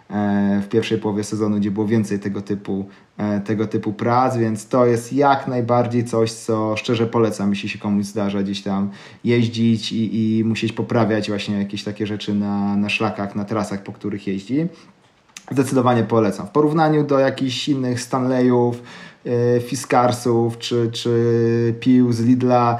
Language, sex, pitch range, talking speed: Polish, male, 110-125 Hz, 155 wpm